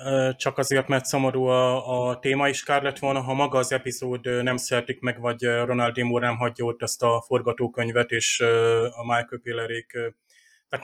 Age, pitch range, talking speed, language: 30-49, 120-135 Hz, 170 wpm, Hungarian